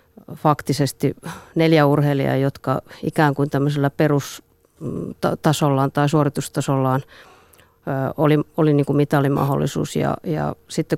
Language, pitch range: Finnish, 140-160 Hz